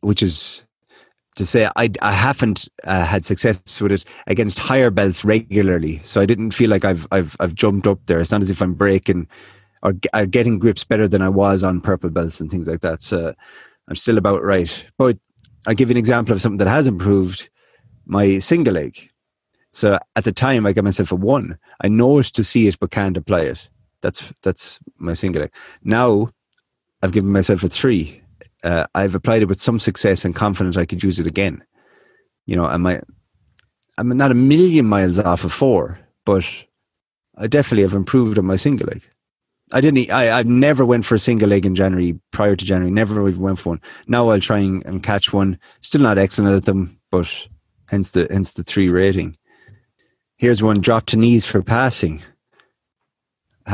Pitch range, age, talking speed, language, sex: 95-115 Hz, 30-49, 200 wpm, English, male